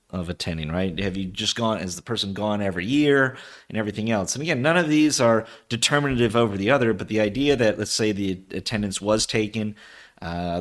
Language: English